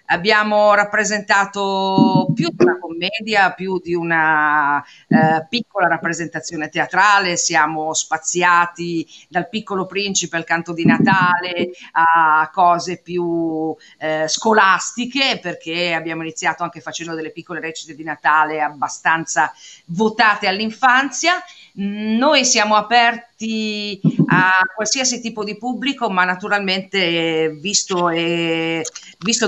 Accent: native